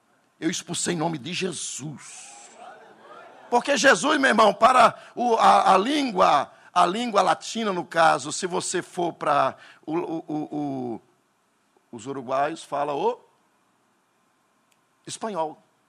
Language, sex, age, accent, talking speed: Portuguese, male, 60-79, Brazilian, 125 wpm